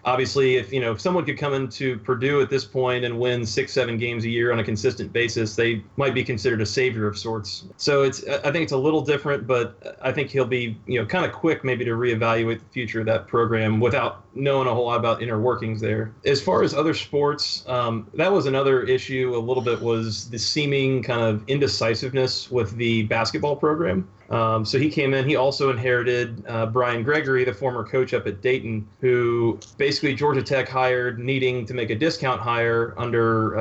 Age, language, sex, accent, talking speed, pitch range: 30-49, English, male, American, 215 wpm, 115-135 Hz